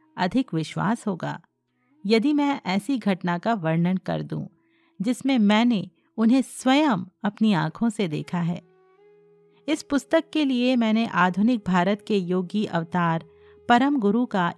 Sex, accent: female, native